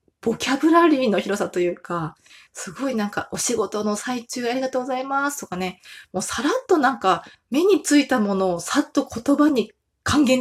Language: Japanese